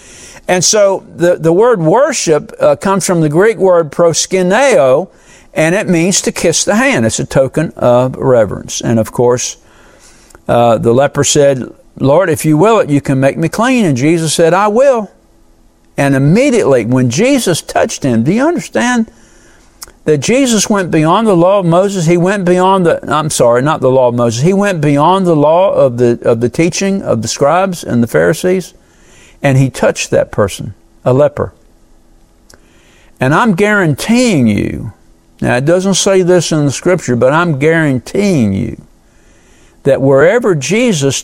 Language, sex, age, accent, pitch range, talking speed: English, male, 60-79, American, 120-190 Hz, 170 wpm